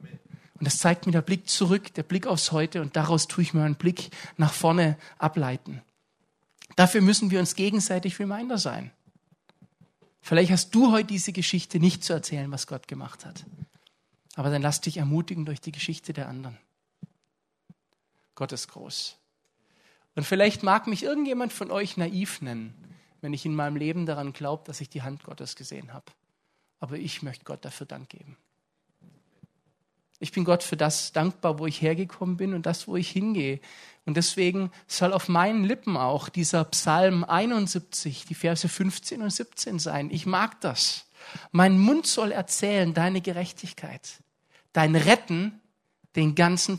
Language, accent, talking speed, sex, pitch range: German, German, 165 wpm, male, 155-185 Hz